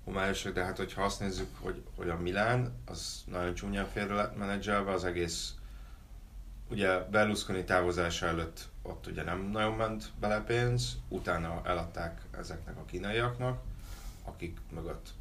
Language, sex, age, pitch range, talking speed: Hungarian, male, 30-49, 85-100 Hz, 135 wpm